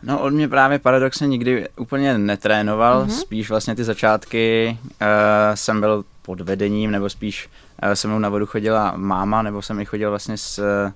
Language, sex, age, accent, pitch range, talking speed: Czech, male, 20-39, native, 100-110 Hz, 165 wpm